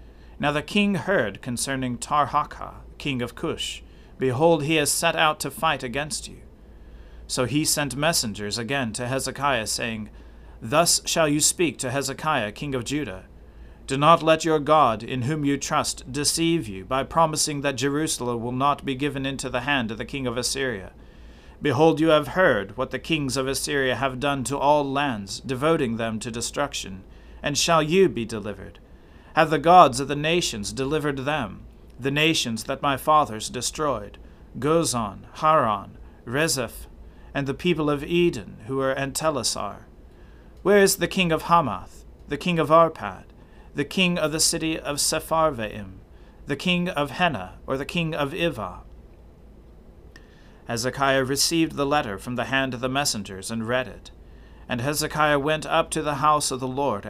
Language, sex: English, male